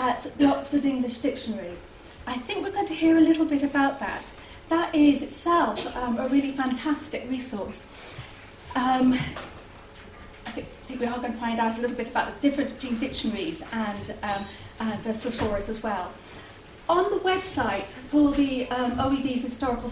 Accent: British